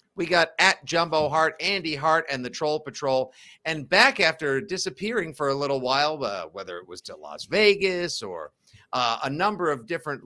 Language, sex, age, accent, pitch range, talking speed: English, male, 50-69, American, 130-160 Hz, 185 wpm